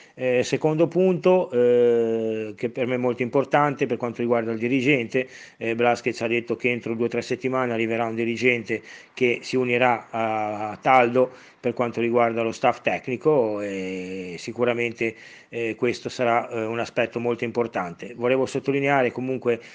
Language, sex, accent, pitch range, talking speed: Italian, male, native, 115-130 Hz, 160 wpm